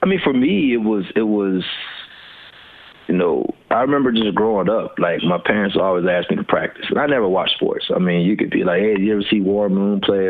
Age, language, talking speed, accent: 30-49, English, 240 wpm, American